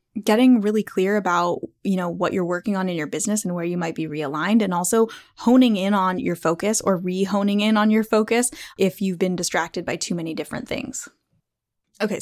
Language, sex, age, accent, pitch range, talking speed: English, female, 10-29, American, 180-225 Hz, 205 wpm